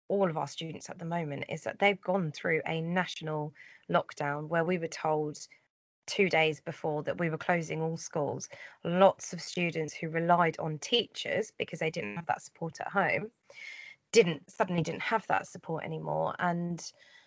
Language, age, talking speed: English, 20-39, 175 wpm